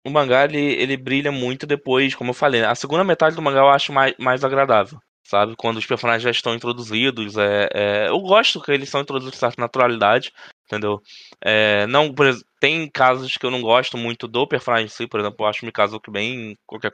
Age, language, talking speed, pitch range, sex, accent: 20-39, Portuguese, 225 wpm, 110-145 Hz, male, Brazilian